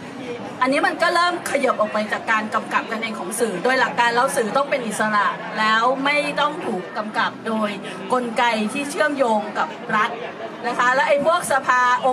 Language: Thai